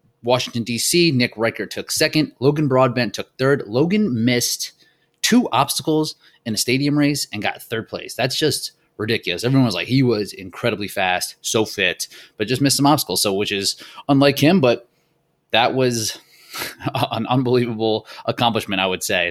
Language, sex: English, male